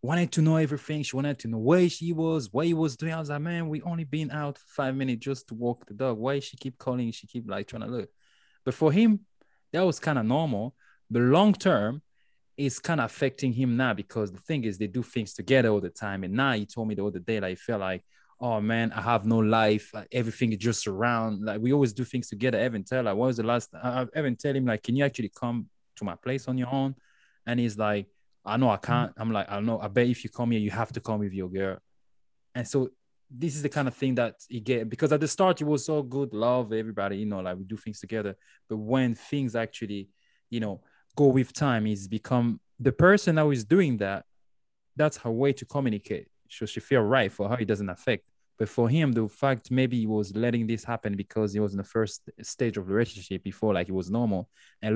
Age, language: 20-39, English